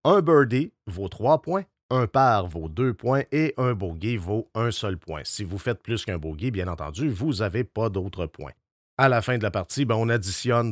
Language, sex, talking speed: French, male, 220 wpm